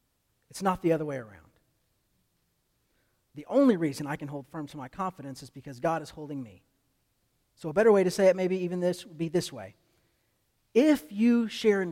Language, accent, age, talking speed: English, American, 40-59, 200 wpm